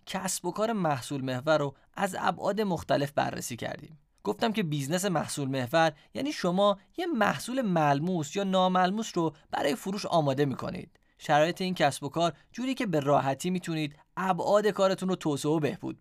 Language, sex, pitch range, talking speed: Persian, male, 145-190 Hz, 170 wpm